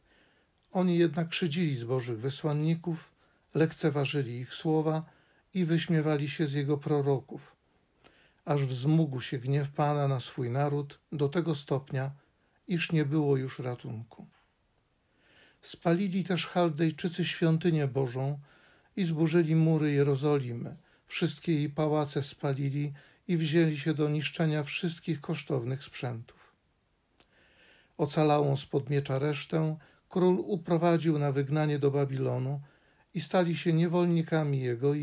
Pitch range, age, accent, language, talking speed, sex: 140-160 Hz, 50-69, native, Polish, 115 wpm, male